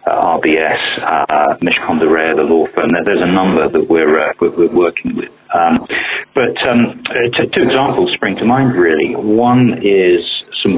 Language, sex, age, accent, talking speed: English, male, 40-59, British, 160 wpm